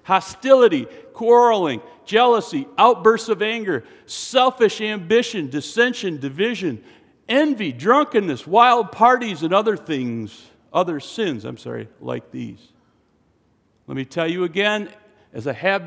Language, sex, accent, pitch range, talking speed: English, male, American, 145-210 Hz, 115 wpm